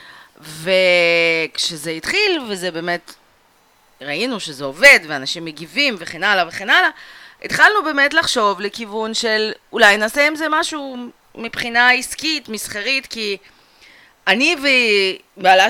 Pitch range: 170-275 Hz